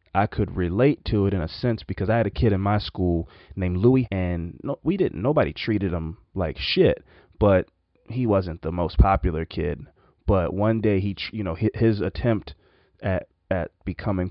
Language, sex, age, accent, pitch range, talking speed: English, male, 30-49, American, 90-115 Hz, 190 wpm